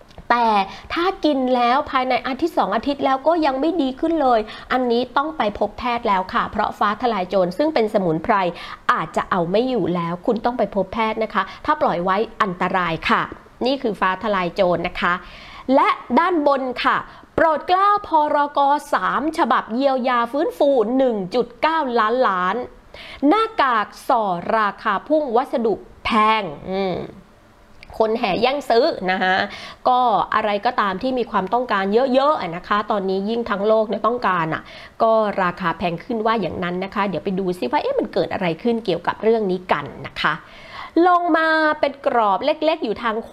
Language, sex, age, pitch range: Thai, female, 30-49, 205-280 Hz